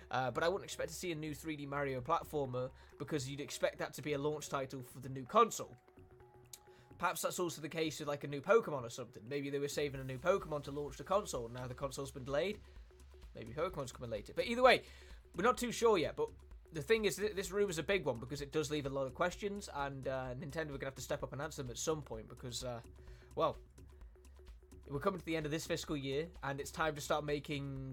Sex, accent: male, British